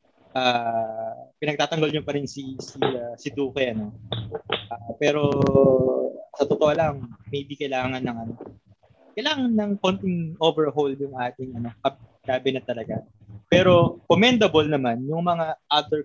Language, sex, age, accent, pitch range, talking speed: Filipino, male, 20-39, native, 115-140 Hz, 130 wpm